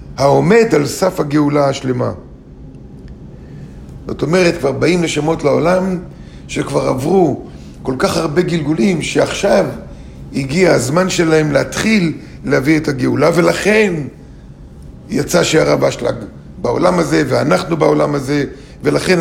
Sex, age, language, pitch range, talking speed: male, 50-69, Hebrew, 125-170 Hz, 110 wpm